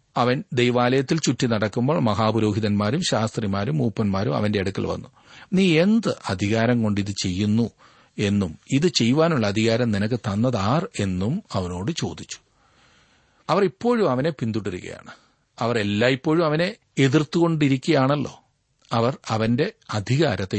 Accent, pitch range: native, 110-155 Hz